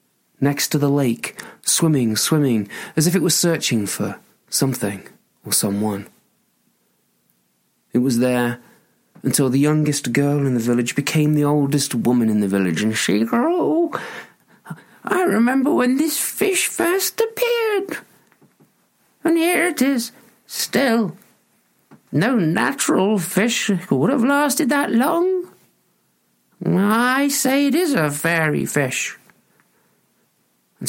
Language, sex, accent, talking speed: English, male, British, 120 wpm